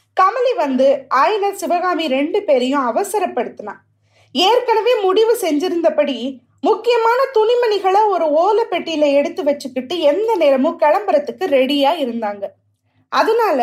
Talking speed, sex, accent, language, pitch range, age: 100 wpm, female, native, Tamil, 255-375 Hz, 20-39